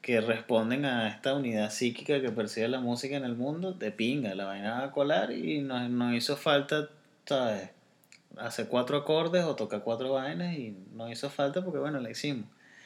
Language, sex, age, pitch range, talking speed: Spanish, male, 30-49, 110-140 Hz, 190 wpm